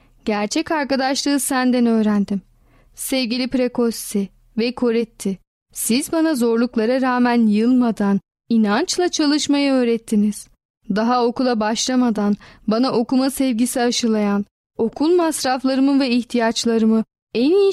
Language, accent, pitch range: Turkish, native, 220-260 Hz